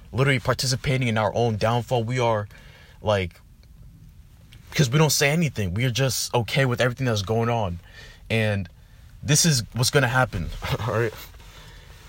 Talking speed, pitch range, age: 150 wpm, 90-130 Hz, 20-39